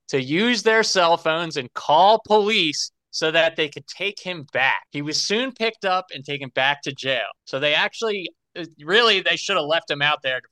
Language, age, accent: English, 30-49, American